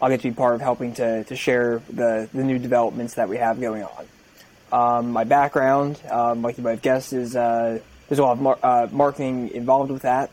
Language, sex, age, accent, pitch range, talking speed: English, male, 20-39, American, 115-130 Hz, 230 wpm